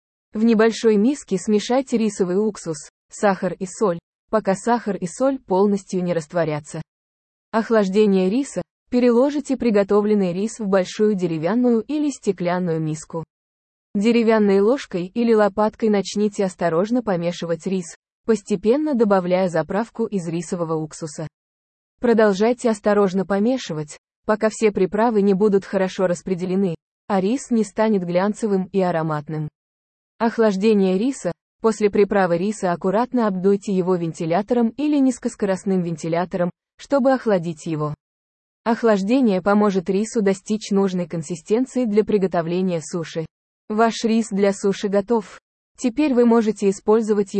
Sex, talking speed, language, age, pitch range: female, 115 wpm, English, 20-39, 175-225 Hz